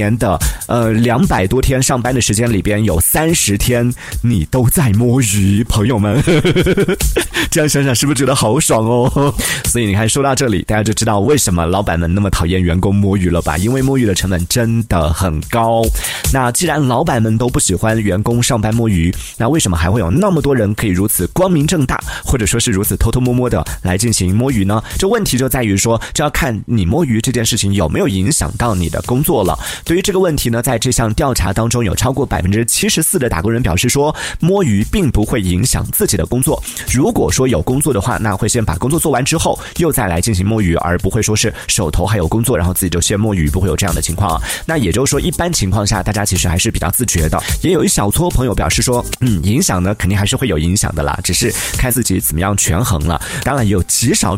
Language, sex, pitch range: Chinese, male, 95-130 Hz